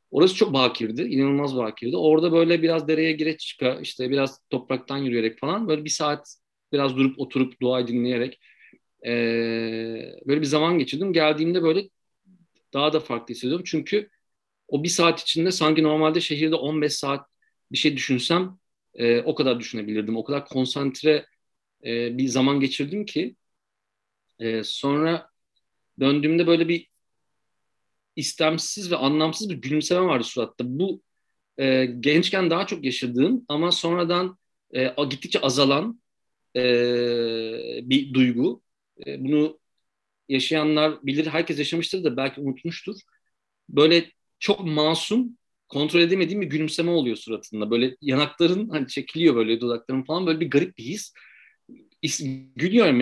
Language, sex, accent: Turkish, male, native